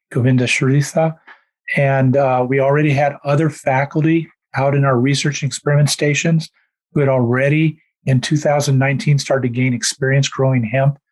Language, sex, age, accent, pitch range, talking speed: English, male, 40-59, American, 130-150 Hz, 140 wpm